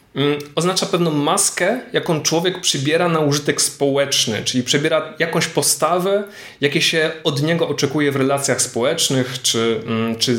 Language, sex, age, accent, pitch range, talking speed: Polish, male, 20-39, native, 120-150 Hz, 135 wpm